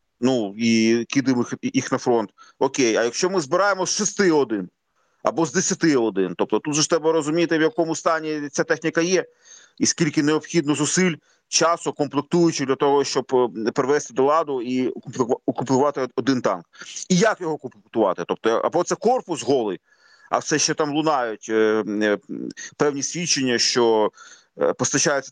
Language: Ukrainian